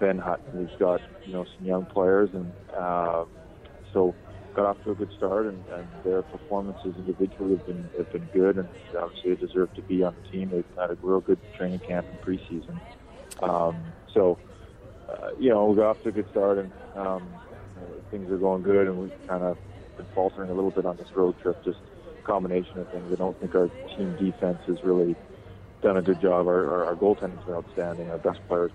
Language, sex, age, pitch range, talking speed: French, male, 30-49, 90-95 Hz, 215 wpm